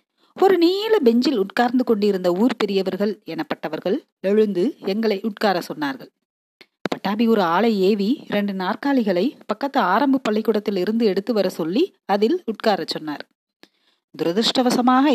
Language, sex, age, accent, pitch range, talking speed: Tamil, female, 40-59, native, 190-260 Hz, 115 wpm